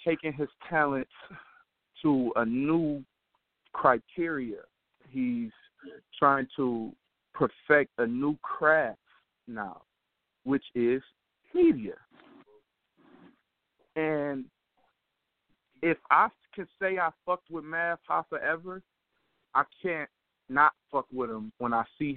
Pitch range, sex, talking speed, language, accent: 125-180 Hz, male, 105 wpm, English, American